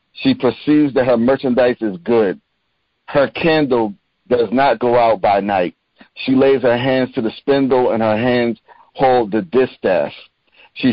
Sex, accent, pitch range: male, American, 115-140 Hz